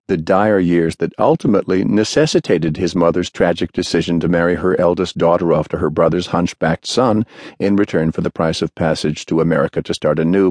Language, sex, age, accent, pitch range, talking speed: English, male, 50-69, American, 85-110 Hz, 195 wpm